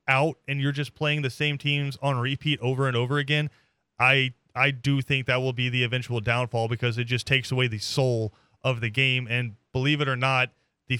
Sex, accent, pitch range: male, American, 125-155 Hz